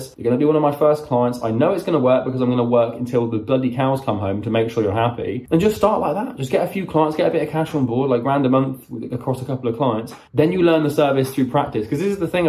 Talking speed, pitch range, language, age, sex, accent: 330 wpm, 115-135 Hz, English, 20-39, male, British